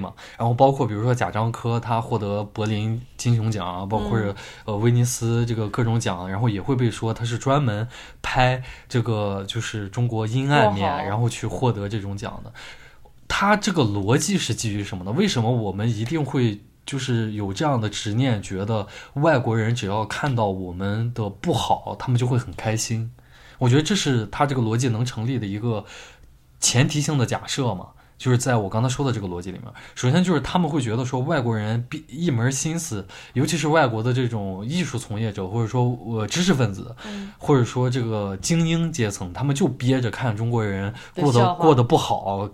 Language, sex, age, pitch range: Chinese, male, 20-39, 110-140 Hz